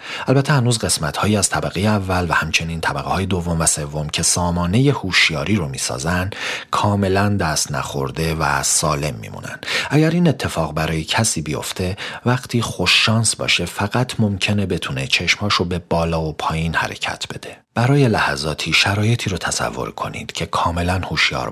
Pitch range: 80-110 Hz